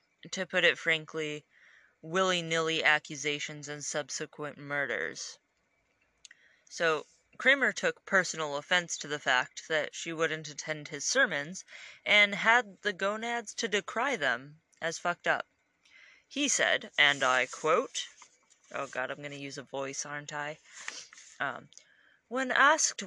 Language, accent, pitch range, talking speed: English, American, 155-205 Hz, 135 wpm